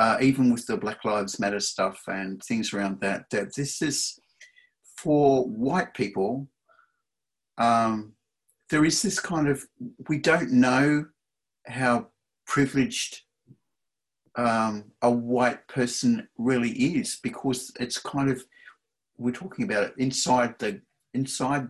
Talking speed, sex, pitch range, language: 125 wpm, male, 115-145 Hz, English